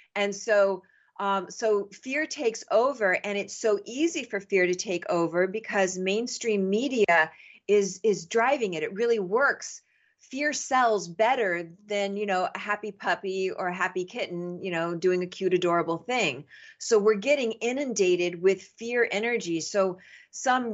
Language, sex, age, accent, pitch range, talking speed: English, female, 40-59, American, 185-235 Hz, 160 wpm